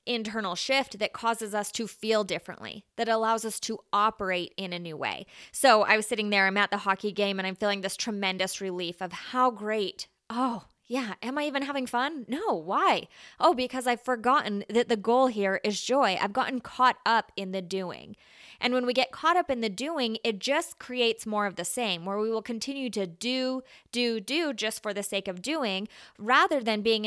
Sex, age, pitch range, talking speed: female, 20-39, 205-260 Hz, 210 wpm